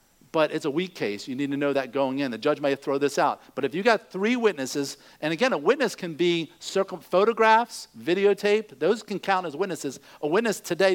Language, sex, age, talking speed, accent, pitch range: English, male, 50-69, 225 wpm, American, 165-230 Hz